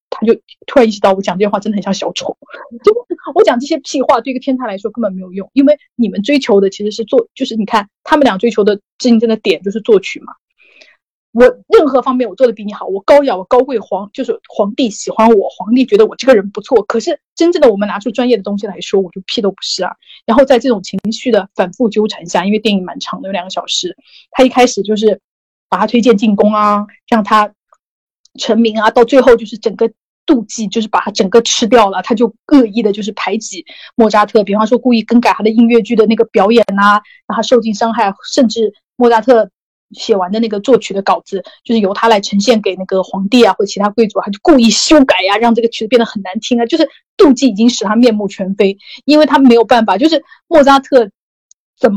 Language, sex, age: Chinese, female, 20-39